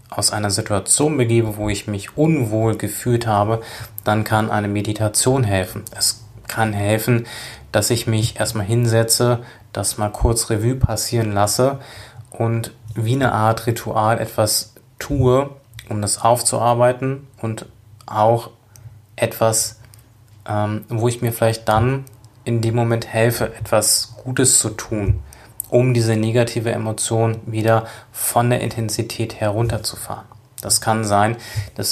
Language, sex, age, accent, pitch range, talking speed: German, male, 20-39, German, 105-120 Hz, 130 wpm